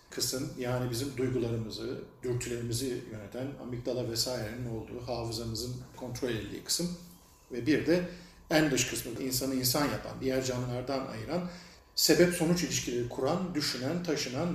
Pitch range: 130-180 Hz